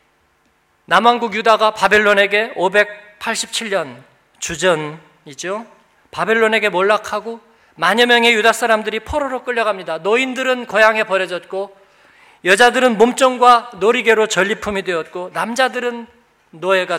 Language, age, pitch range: Korean, 40-59, 185-240 Hz